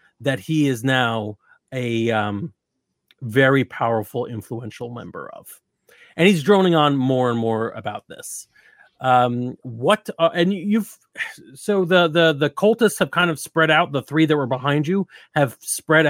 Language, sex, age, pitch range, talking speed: English, male, 30-49, 120-150 Hz, 160 wpm